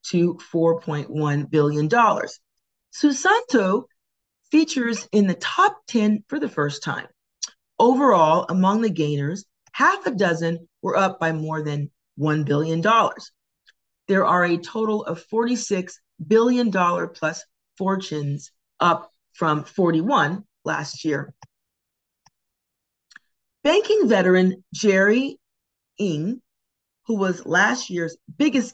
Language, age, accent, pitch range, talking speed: English, 40-59, American, 160-225 Hz, 105 wpm